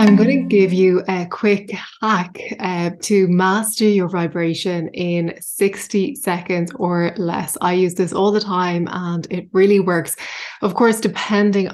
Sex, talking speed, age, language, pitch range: female, 155 wpm, 20-39, English, 180-205 Hz